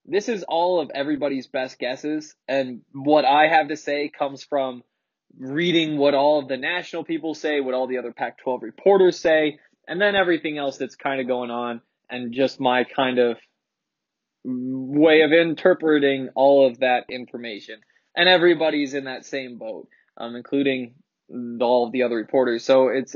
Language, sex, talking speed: English, male, 175 wpm